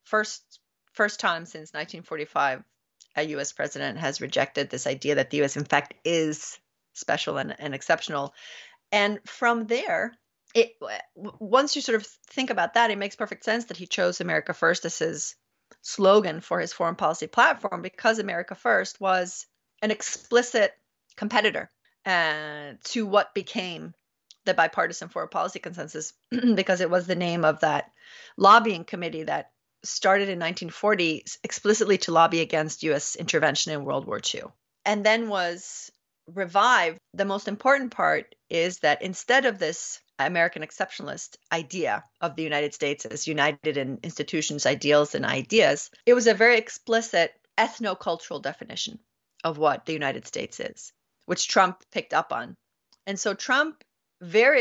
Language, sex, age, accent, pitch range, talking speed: English, female, 30-49, American, 160-220 Hz, 150 wpm